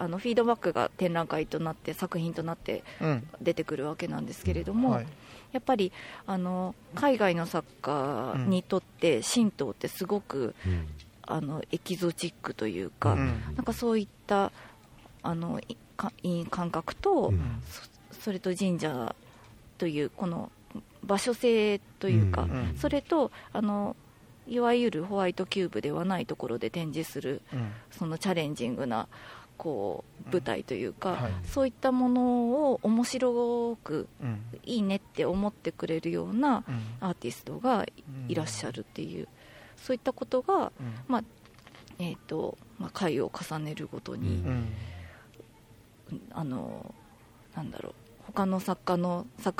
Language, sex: Japanese, female